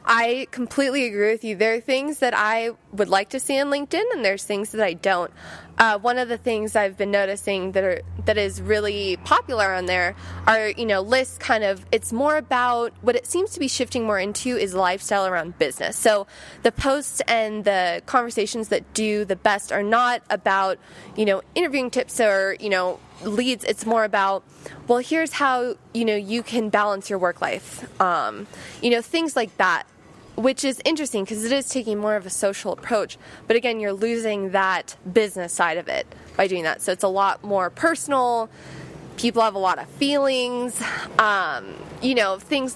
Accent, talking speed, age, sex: American, 195 wpm, 20-39, female